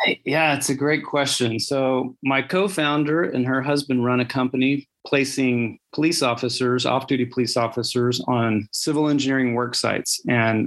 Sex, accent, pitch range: male, American, 120-135 Hz